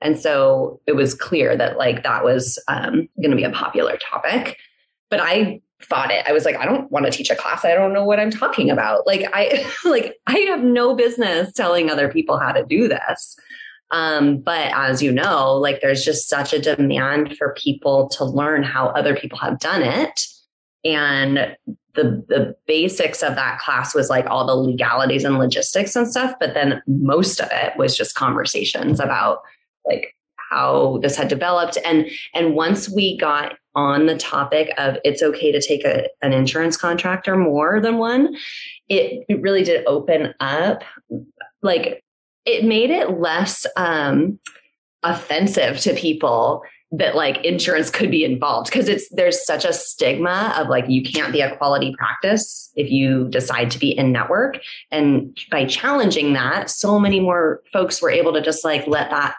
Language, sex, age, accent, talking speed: English, female, 20-39, American, 180 wpm